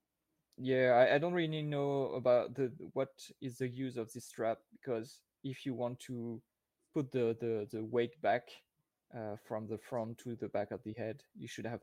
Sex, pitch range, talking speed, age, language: male, 110-125 Hz, 200 wpm, 20-39, English